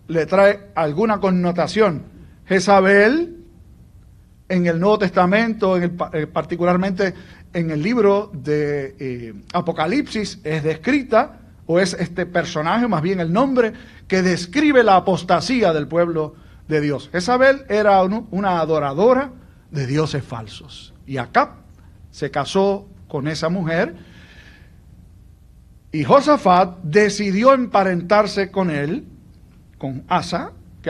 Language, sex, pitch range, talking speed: Spanish, male, 150-205 Hz, 115 wpm